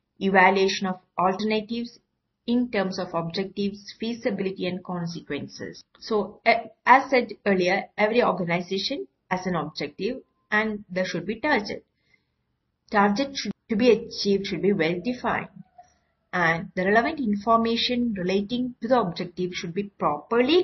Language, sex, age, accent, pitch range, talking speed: Malayalam, female, 50-69, native, 185-225 Hz, 130 wpm